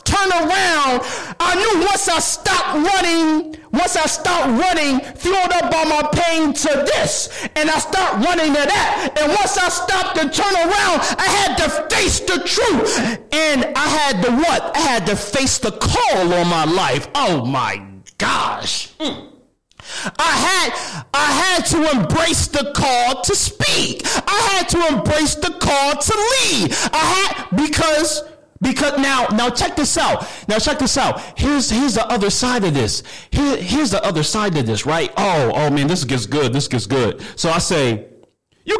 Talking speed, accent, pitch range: 175 wpm, American, 225-350 Hz